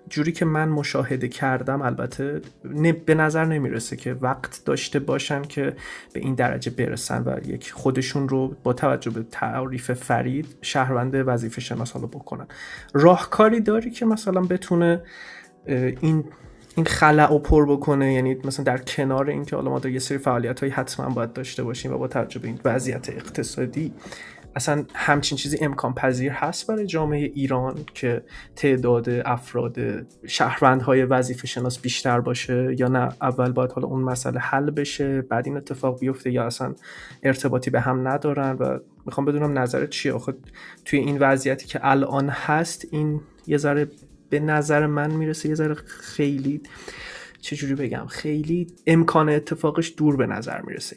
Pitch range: 125-150 Hz